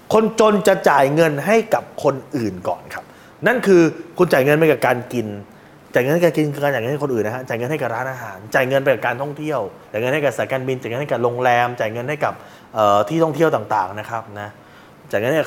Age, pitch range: 20-39, 130-180 Hz